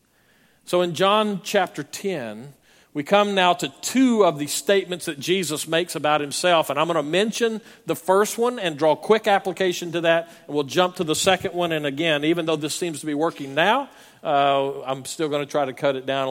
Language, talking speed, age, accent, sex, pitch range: English, 220 wpm, 50-69, American, male, 150-195 Hz